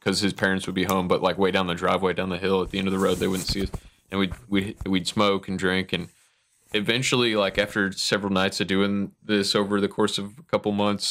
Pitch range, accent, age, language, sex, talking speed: 95-105 Hz, American, 20-39, English, male, 255 wpm